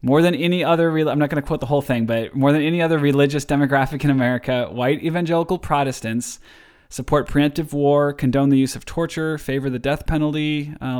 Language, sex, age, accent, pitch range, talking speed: English, male, 20-39, American, 120-145 Hz, 200 wpm